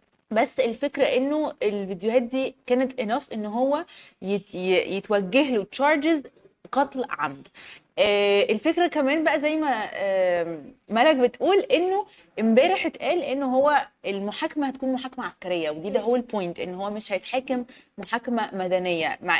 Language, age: Arabic, 20-39